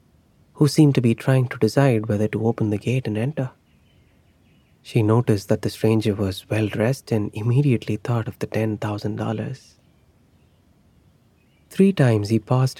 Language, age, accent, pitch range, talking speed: Hindi, 20-39, native, 105-130 Hz, 160 wpm